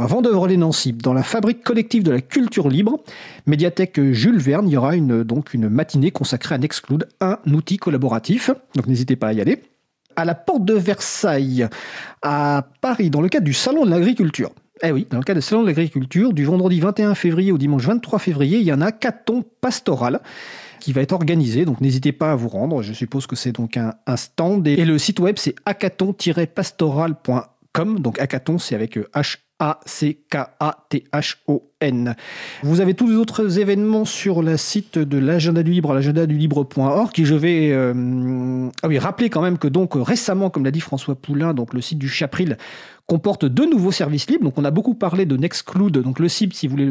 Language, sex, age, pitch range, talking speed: French, male, 40-59, 140-195 Hz, 200 wpm